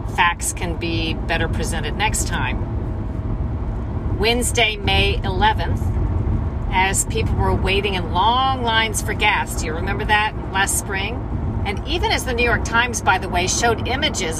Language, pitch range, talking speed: English, 95-110 Hz, 155 wpm